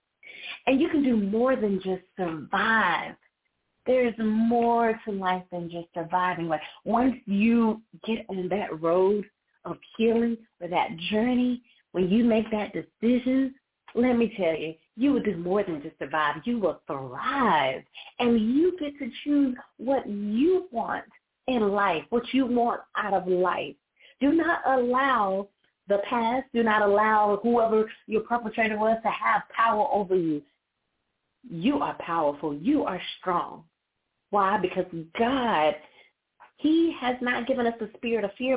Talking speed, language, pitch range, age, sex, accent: 150 wpm, English, 185-245 Hz, 30-49, female, American